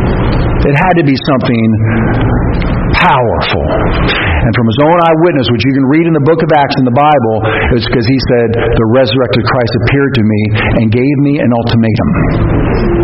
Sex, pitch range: male, 120-170 Hz